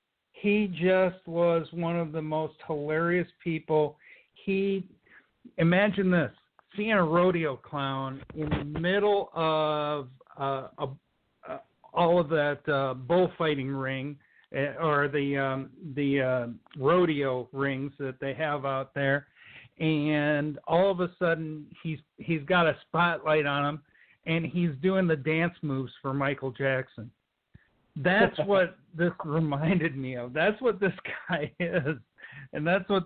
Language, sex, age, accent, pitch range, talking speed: English, male, 50-69, American, 140-175 Hz, 140 wpm